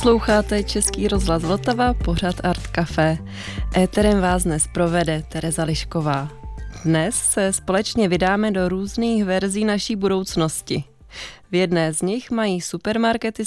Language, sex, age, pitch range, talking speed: Czech, female, 20-39, 170-210 Hz, 125 wpm